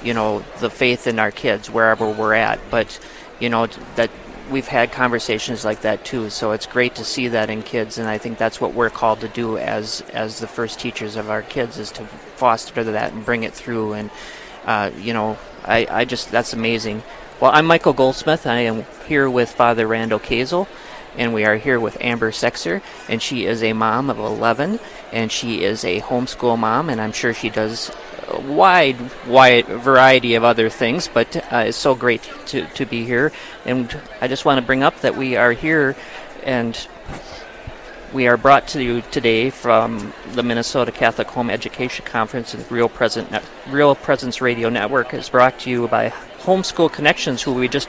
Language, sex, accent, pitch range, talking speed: English, male, American, 115-135 Hz, 195 wpm